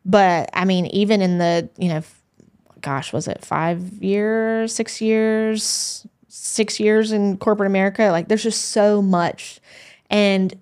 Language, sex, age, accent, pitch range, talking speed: English, female, 20-39, American, 175-205 Hz, 155 wpm